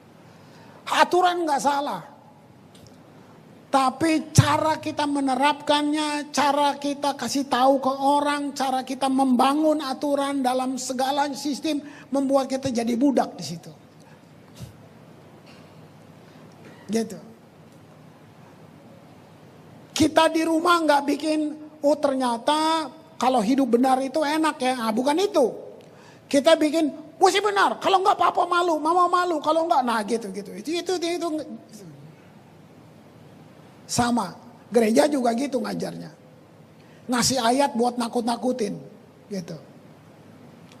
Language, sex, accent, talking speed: Indonesian, male, native, 105 wpm